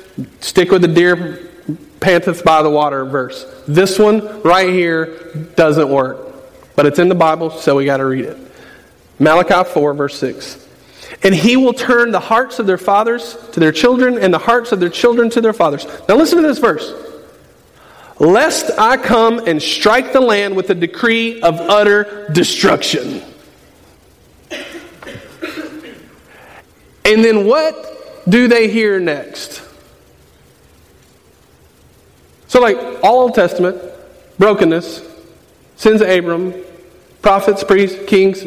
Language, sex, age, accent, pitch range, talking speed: English, male, 40-59, American, 145-205 Hz, 135 wpm